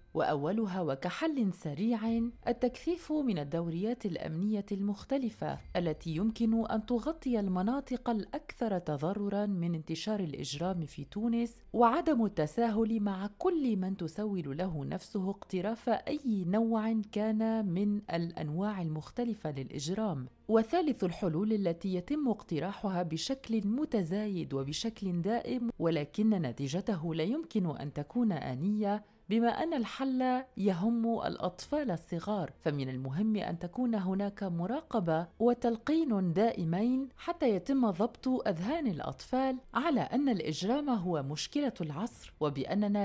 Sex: female